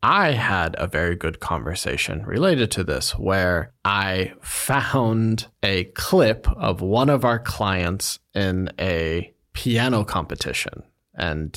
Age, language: 20-39, Chinese